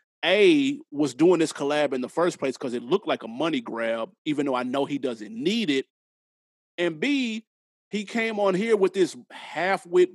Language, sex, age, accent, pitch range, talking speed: English, male, 30-49, American, 150-240 Hz, 195 wpm